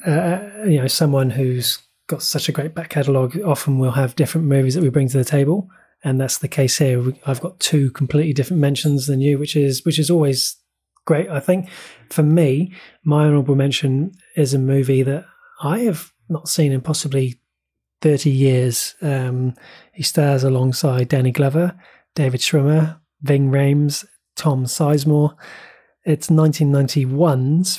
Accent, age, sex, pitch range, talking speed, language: British, 30-49, male, 135-155 Hz, 160 wpm, English